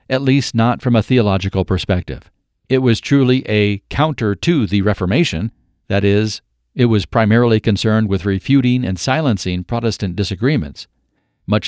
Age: 50-69